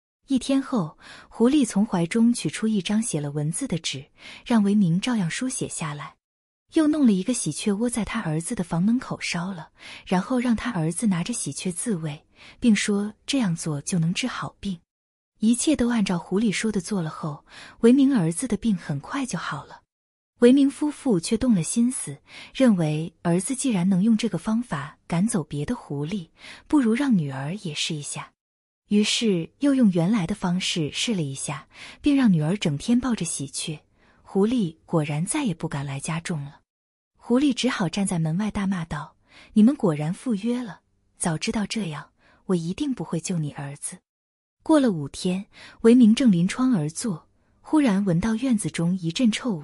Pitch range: 165-235 Hz